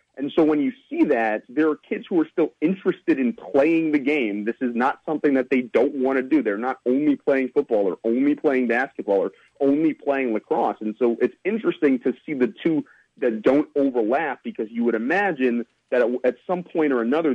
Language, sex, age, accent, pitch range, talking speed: English, male, 30-49, American, 115-150 Hz, 210 wpm